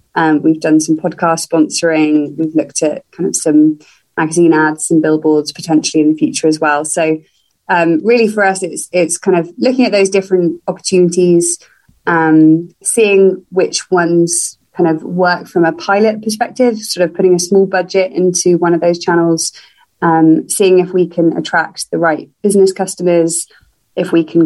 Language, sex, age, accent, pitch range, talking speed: English, female, 20-39, British, 160-190 Hz, 175 wpm